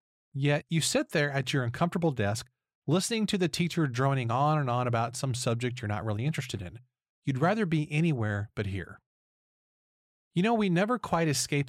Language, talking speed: English, 185 wpm